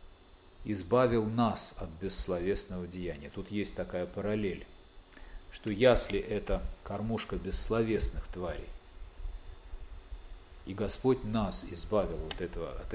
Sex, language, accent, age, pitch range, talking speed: male, Russian, native, 40-59, 85-110 Hz, 100 wpm